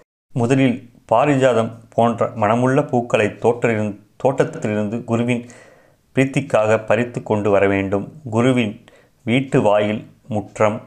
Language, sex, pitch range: Tamil, male, 105-125 Hz